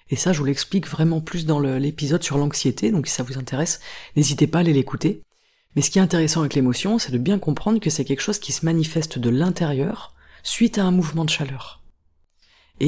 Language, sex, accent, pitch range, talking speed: French, female, French, 135-180 Hz, 225 wpm